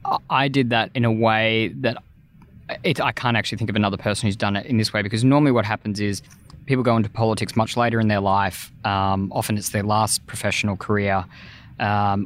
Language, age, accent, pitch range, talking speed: English, 20-39, Australian, 105-120 Hz, 205 wpm